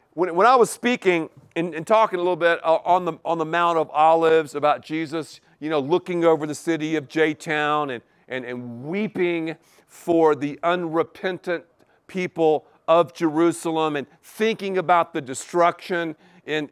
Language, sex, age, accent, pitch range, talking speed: English, male, 50-69, American, 150-200 Hz, 160 wpm